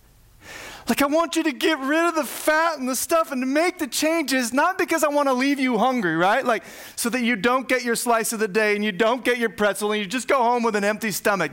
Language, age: English, 30-49